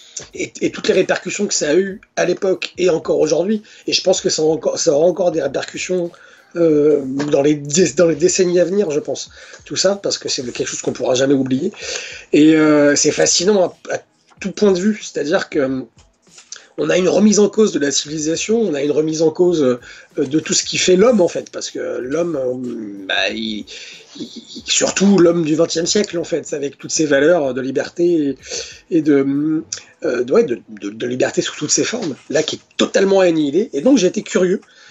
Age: 30-49